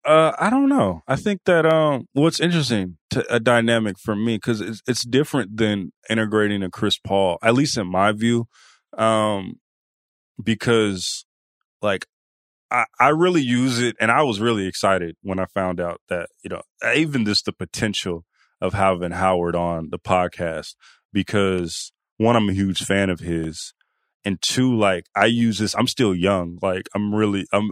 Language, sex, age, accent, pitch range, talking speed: English, male, 20-39, American, 90-110 Hz, 175 wpm